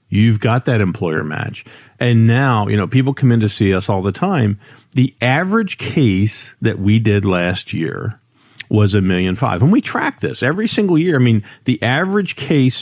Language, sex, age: English, male, 50-69